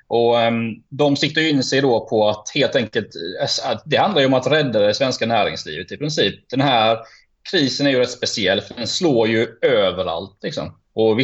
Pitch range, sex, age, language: 115-145 Hz, male, 20-39, Swedish